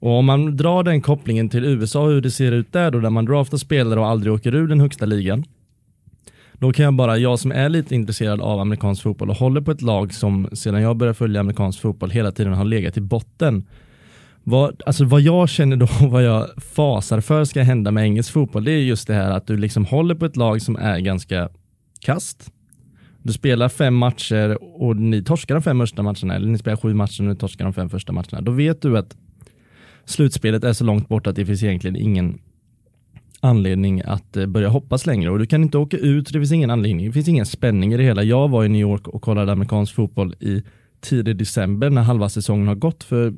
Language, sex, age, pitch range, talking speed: Swedish, male, 20-39, 105-135 Hz, 230 wpm